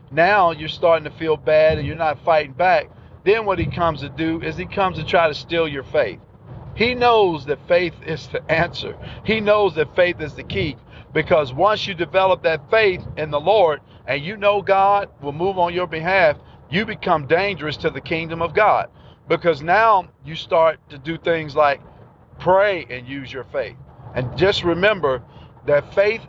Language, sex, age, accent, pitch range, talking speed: English, male, 50-69, American, 145-190 Hz, 190 wpm